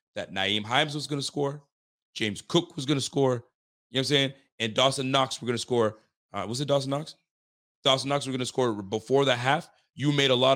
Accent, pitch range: American, 115-145 Hz